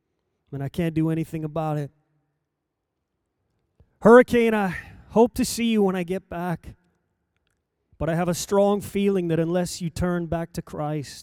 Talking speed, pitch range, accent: 160 wpm, 140-190 Hz, American